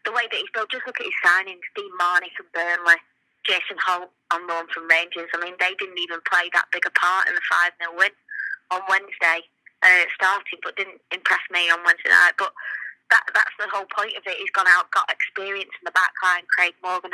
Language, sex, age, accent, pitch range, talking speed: English, female, 20-39, British, 180-210 Hz, 230 wpm